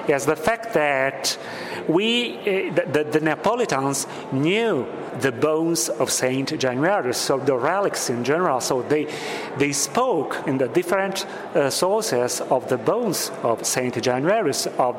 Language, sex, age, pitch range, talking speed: English, male, 40-59, 140-190 Hz, 145 wpm